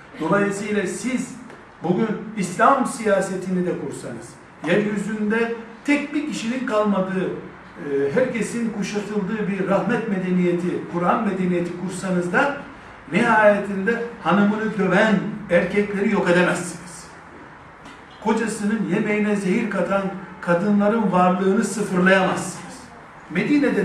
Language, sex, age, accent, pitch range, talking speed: Turkish, male, 60-79, native, 170-210 Hz, 90 wpm